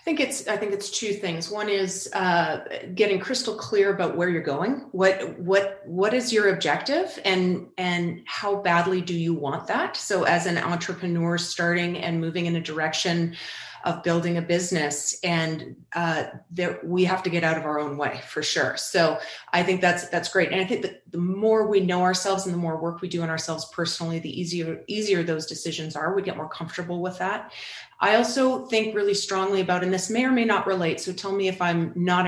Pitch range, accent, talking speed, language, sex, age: 165-195 Hz, American, 215 wpm, English, female, 30-49